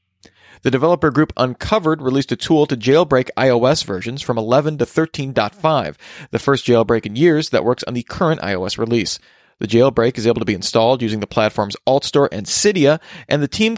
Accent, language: American, English